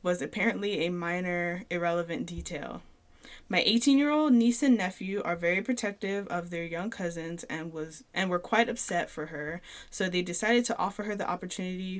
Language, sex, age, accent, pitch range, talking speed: English, female, 10-29, American, 175-230 Hz, 180 wpm